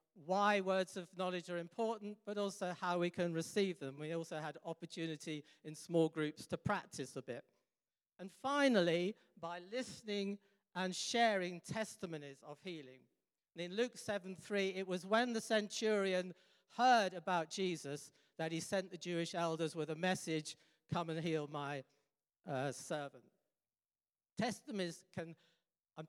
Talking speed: 145 wpm